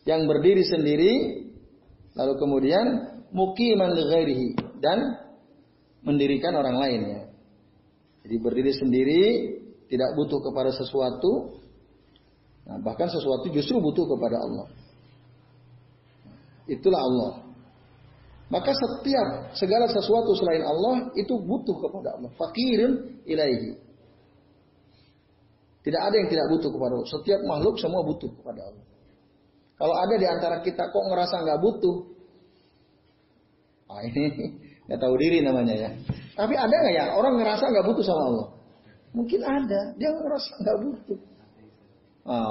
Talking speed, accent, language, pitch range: 120 wpm, native, Indonesian, 130-200 Hz